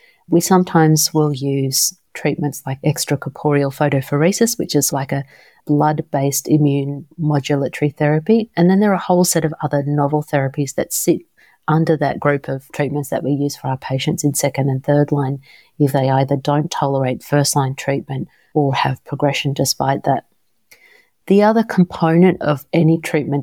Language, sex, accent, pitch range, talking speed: English, female, Australian, 140-160 Hz, 165 wpm